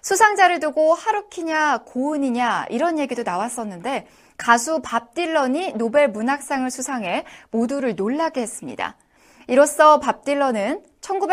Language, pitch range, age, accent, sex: Korean, 240-330 Hz, 20-39, native, female